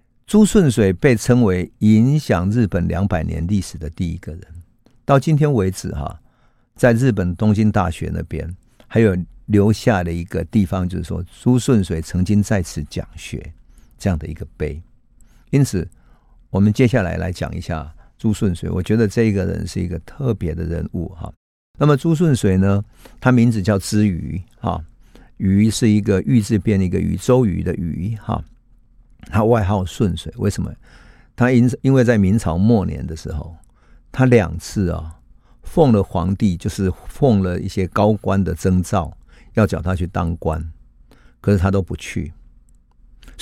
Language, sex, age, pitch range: Chinese, male, 50-69, 85-115 Hz